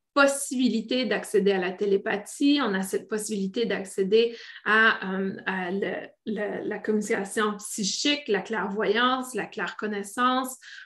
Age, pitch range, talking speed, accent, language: 20-39, 200-245 Hz, 110 wpm, Canadian, French